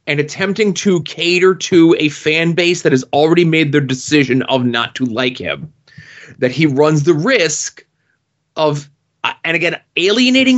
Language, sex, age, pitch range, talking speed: English, male, 30-49, 135-165 Hz, 165 wpm